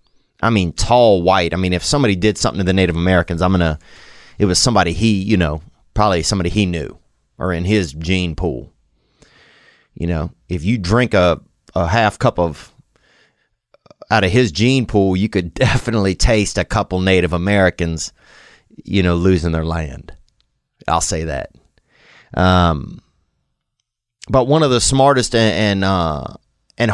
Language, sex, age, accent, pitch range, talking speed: English, male, 30-49, American, 85-110 Hz, 165 wpm